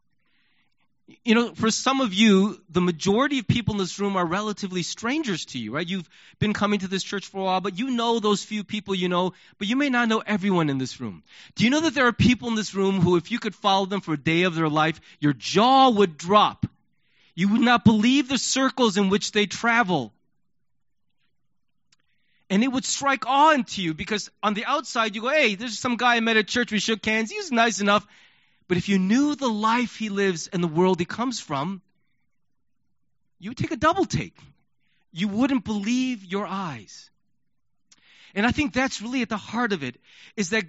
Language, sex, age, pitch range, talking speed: English, male, 30-49, 185-245 Hz, 215 wpm